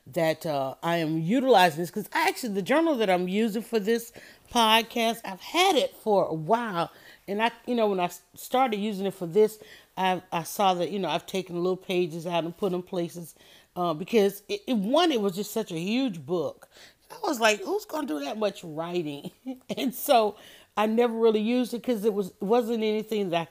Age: 40-59